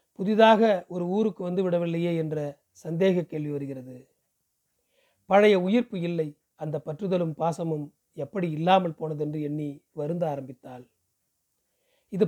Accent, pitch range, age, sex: native, 150-195 Hz, 40-59, male